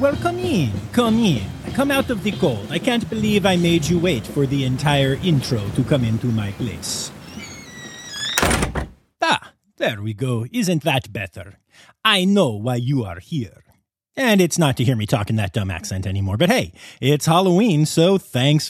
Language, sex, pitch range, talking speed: English, male, 120-175 Hz, 185 wpm